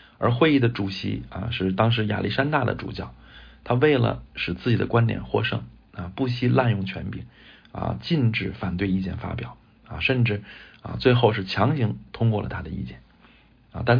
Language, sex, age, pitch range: Chinese, male, 50-69, 95-120 Hz